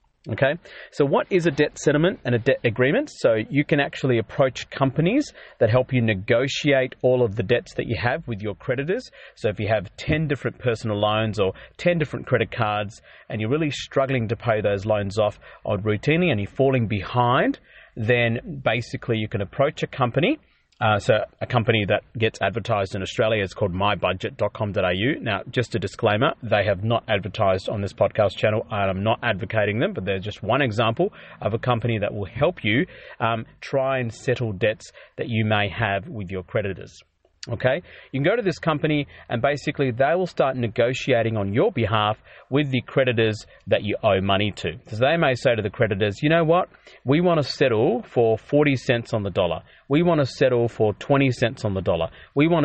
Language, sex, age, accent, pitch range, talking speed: English, male, 30-49, Australian, 110-140 Hz, 200 wpm